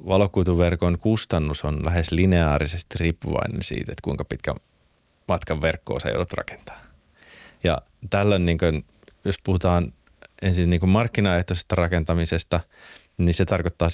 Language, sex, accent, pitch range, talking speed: Finnish, male, native, 80-90 Hz, 120 wpm